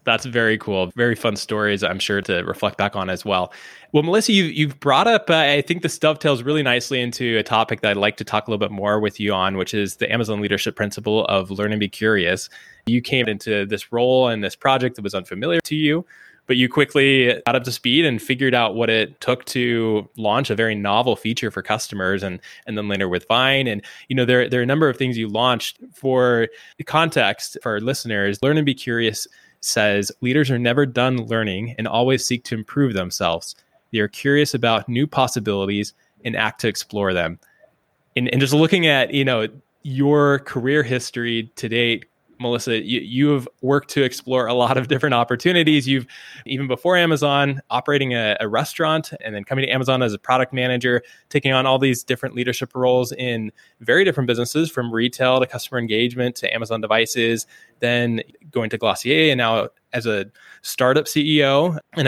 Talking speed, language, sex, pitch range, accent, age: 200 wpm, English, male, 110-135 Hz, American, 20-39